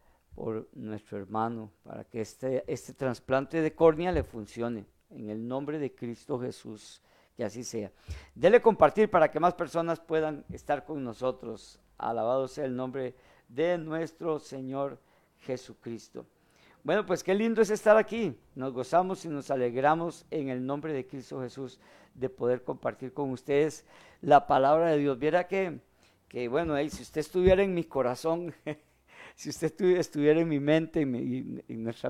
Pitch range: 120-155 Hz